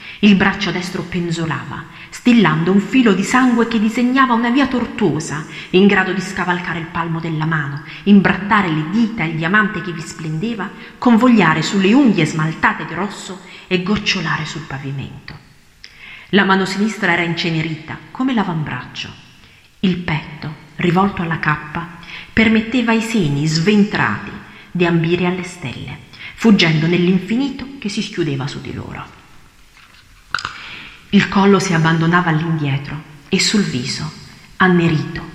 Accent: native